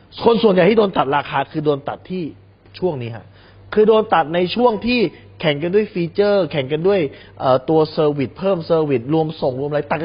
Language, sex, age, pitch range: Thai, male, 20-39, 105-170 Hz